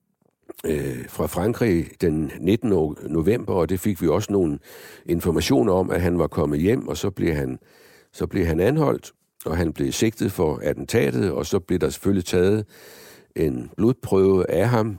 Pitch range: 80-100 Hz